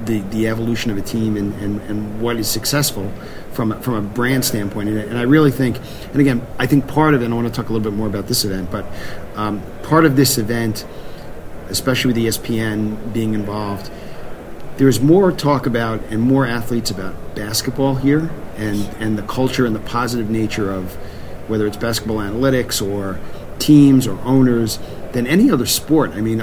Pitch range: 105-125 Hz